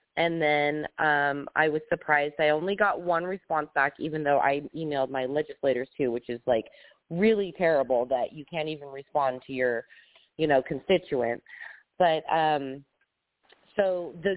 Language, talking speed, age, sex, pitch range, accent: English, 160 wpm, 20-39, female, 145-190 Hz, American